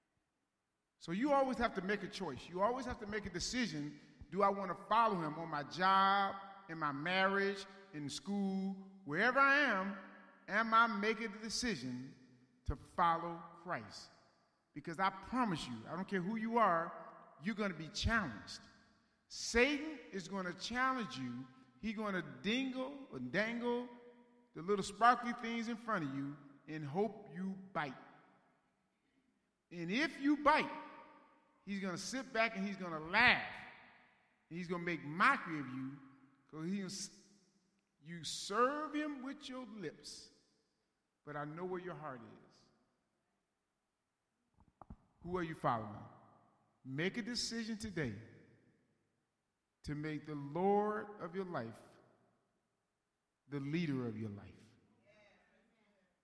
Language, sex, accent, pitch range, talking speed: English, male, American, 150-225 Hz, 140 wpm